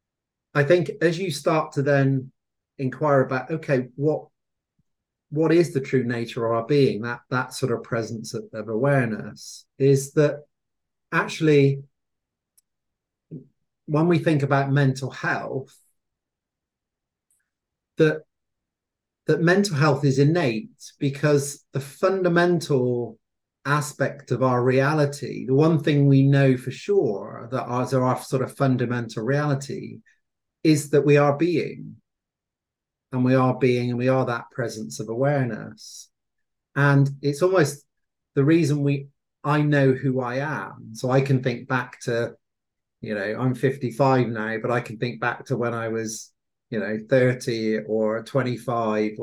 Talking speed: 140 wpm